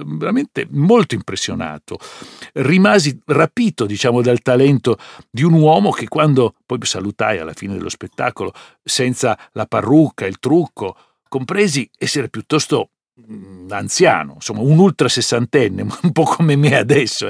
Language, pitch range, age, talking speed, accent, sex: Italian, 110-150 Hz, 60-79, 130 wpm, native, male